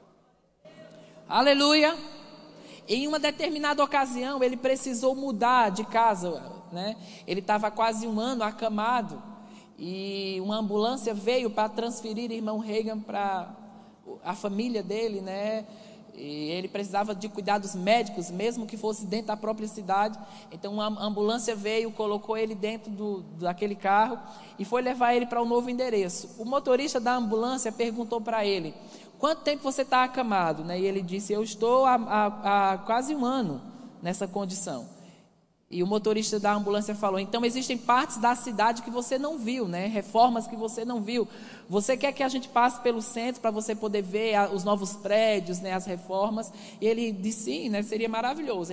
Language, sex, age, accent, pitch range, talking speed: Portuguese, male, 20-39, Brazilian, 205-240 Hz, 165 wpm